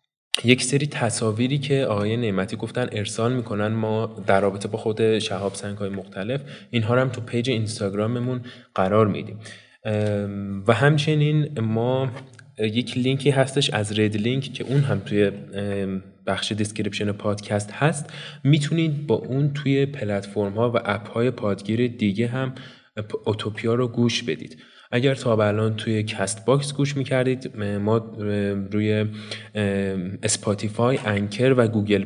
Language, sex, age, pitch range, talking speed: Persian, male, 20-39, 105-125 Hz, 130 wpm